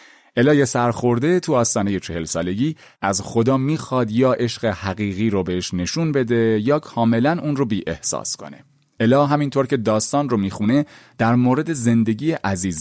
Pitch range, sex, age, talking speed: 110-145 Hz, male, 30-49, 160 wpm